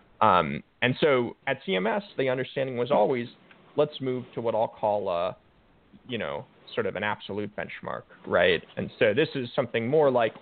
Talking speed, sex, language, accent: 180 wpm, male, English, American